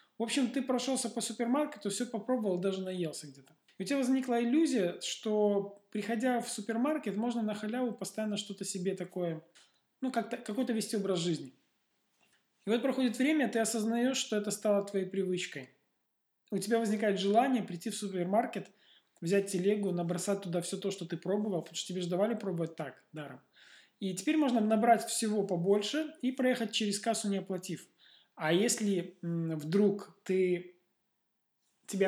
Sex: male